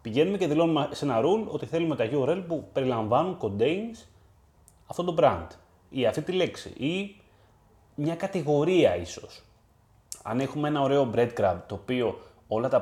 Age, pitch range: 30-49, 100-155 Hz